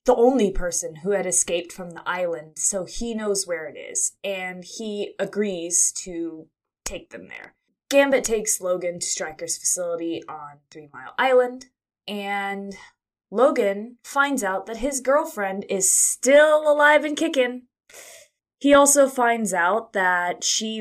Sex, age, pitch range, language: female, 20-39, 170-230 Hz, English